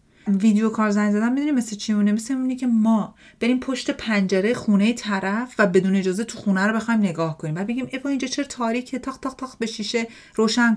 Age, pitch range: 40-59, 175-245 Hz